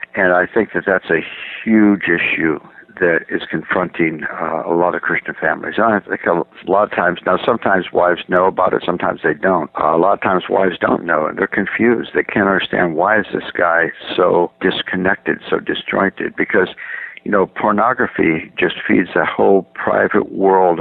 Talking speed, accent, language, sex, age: 185 wpm, American, English, male, 60-79